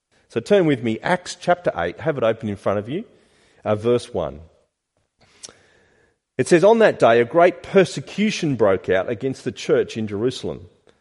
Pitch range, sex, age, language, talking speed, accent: 110-155 Hz, male, 40-59, English, 175 wpm, Australian